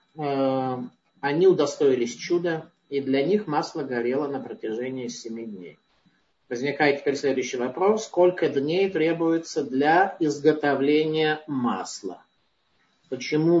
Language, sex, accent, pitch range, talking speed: Russian, male, native, 130-165 Hz, 100 wpm